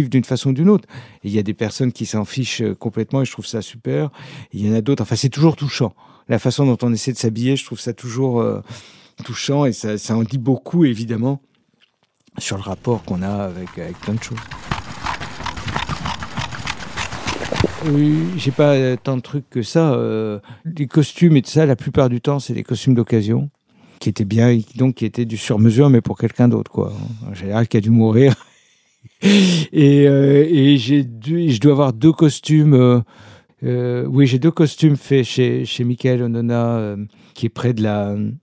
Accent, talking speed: French, 200 wpm